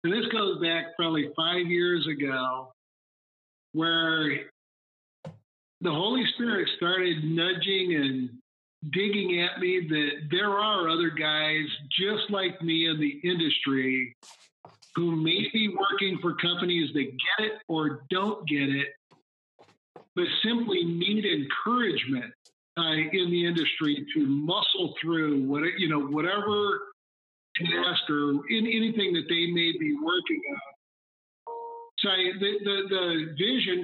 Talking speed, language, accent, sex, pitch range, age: 125 wpm, English, American, male, 155-195 Hz, 50-69